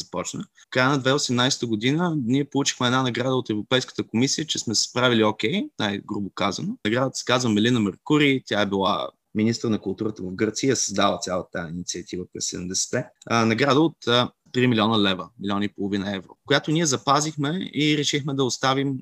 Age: 20-39